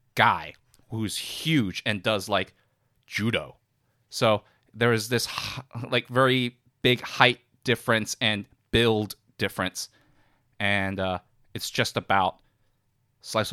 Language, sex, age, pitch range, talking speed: English, male, 30-49, 100-125 Hz, 110 wpm